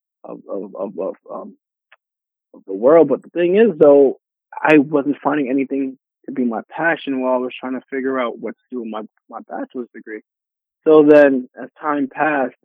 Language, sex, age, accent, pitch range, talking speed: English, male, 20-39, American, 125-150 Hz, 195 wpm